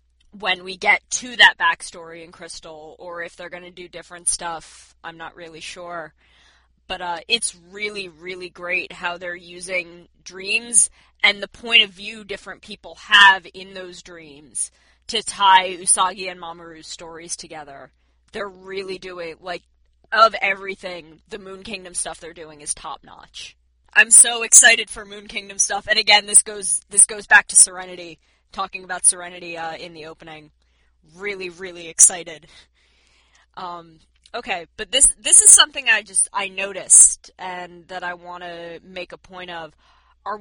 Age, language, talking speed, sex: 20-39, English, 160 wpm, female